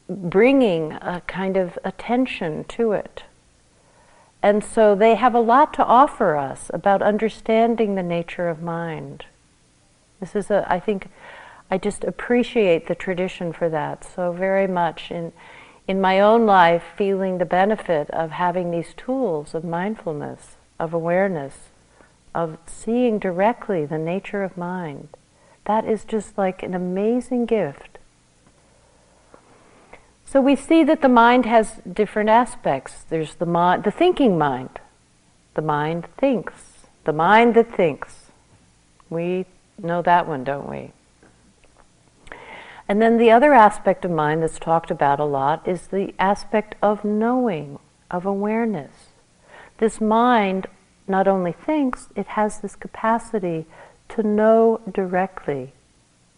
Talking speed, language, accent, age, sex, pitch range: 135 wpm, English, American, 50-69, female, 165-220 Hz